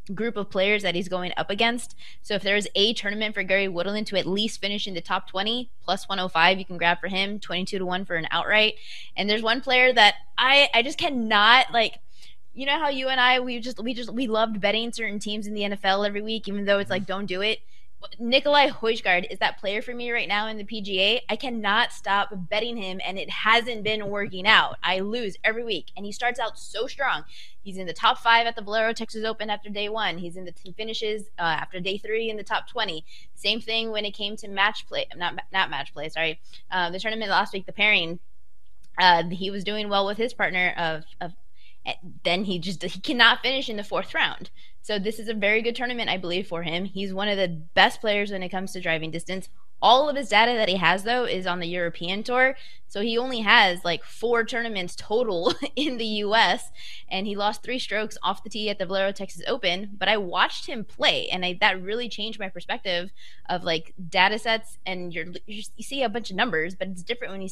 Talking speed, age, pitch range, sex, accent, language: 240 wpm, 20-39, 185-230 Hz, female, American, English